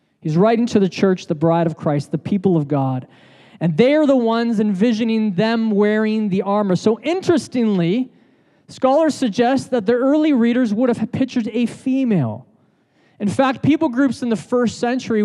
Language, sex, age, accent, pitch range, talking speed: English, male, 20-39, American, 180-230 Hz, 175 wpm